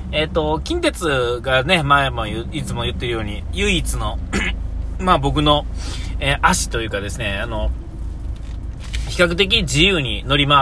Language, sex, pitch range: Japanese, male, 70-95 Hz